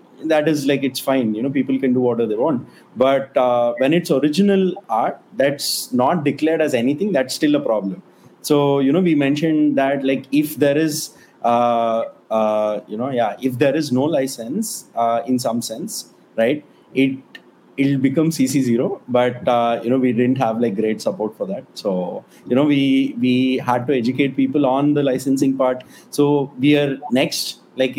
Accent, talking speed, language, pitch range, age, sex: Indian, 185 wpm, English, 125-150 Hz, 30-49, male